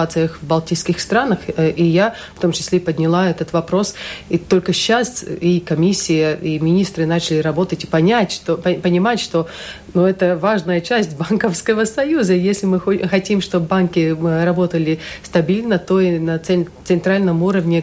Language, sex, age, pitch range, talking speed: Russian, female, 40-59, 165-185 Hz, 145 wpm